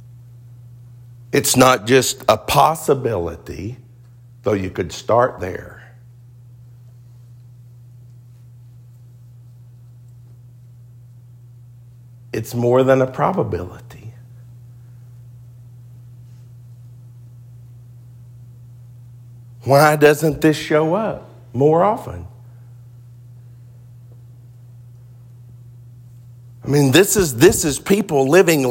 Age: 50-69